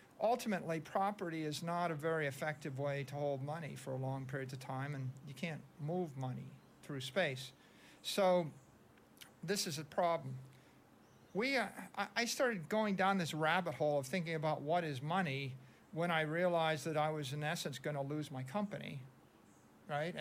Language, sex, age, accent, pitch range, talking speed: English, male, 50-69, American, 145-180 Hz, 170 wpm